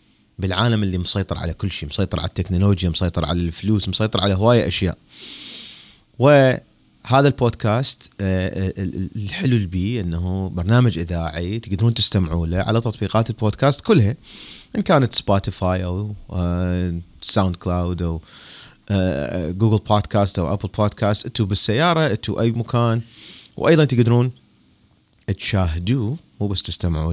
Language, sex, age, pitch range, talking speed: Arabic, male, 30-49, 90-115 Hz, 115 wpm